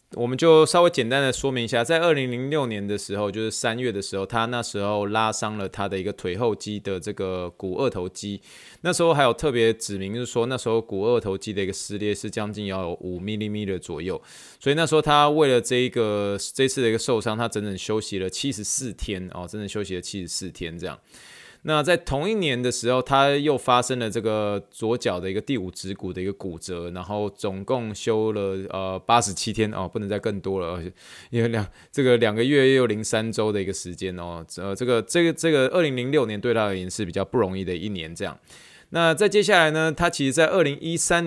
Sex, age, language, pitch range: male, 20-39, Chinese, 100-130 Hz